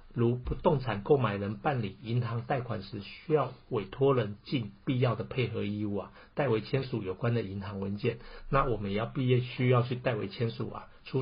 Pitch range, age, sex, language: 105-125 Hz, 50-69, male, Chinese